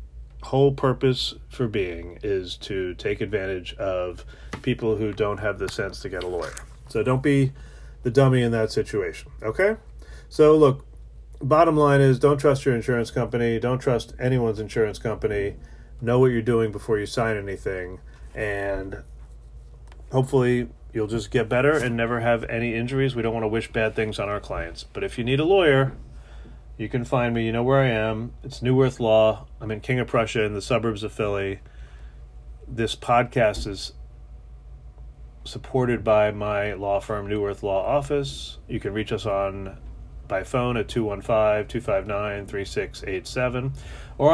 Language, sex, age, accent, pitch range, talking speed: English, male, 30-49, American, 95-125 Hz, 175 wpm